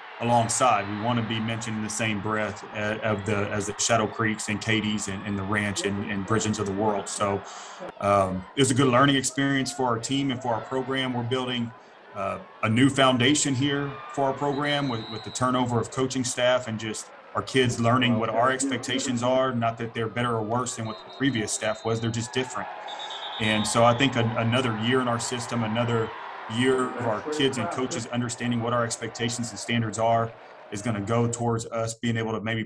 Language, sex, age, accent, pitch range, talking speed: English, male, 30-49, American, 110-125 Hz, 215 wpm